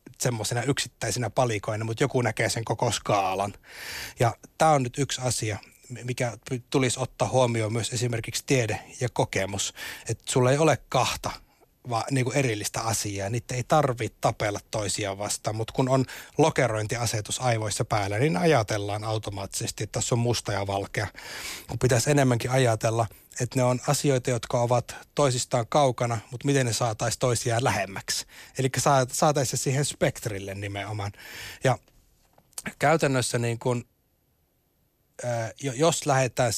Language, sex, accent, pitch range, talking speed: Finnish, male, native, 110-135 Hz, 140 wpm